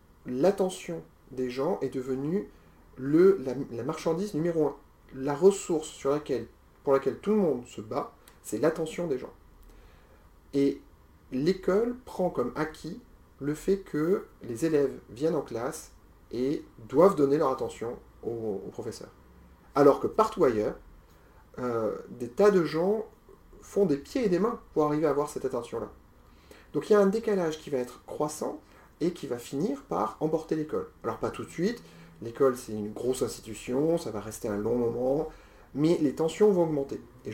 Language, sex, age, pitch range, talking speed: French, male, 40-59, 120-165 Hz, 165 wpm